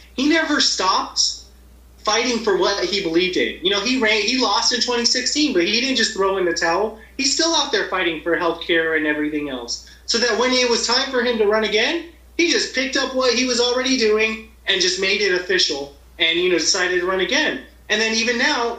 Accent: American